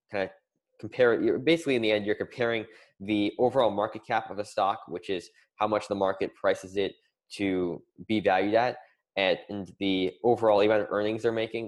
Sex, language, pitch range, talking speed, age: male, English, 100-120 Hz, 190 wpm, 10-29